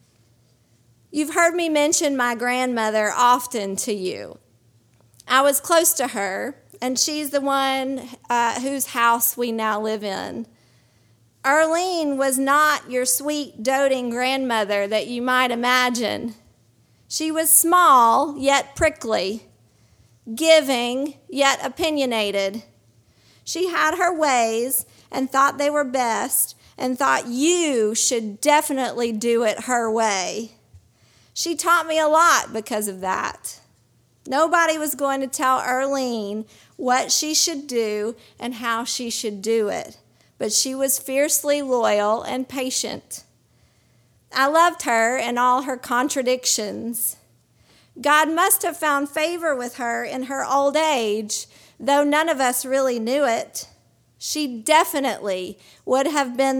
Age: 40-59